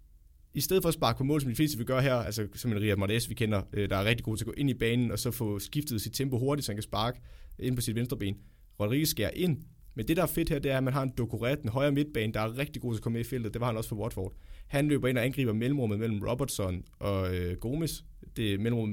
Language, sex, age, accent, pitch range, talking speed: Danish, male, 30-49, native, 105-130 Hz, 300 wpm